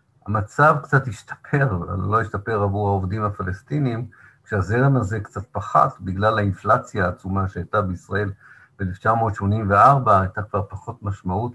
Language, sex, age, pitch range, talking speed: Hebrew, male, 50-69, 95-130 Hz, 120 wpm